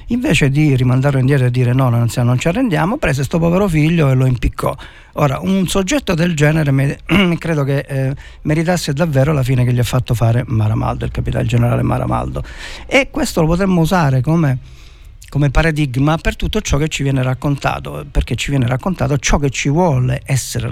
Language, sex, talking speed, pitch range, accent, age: Italian, male, 180 wpm, 115-150 Hz, native, 50-69